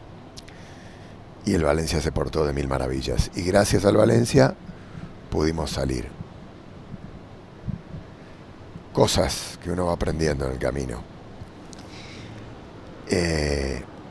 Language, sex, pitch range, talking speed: English, male, 80-105 Hz, 100 wpm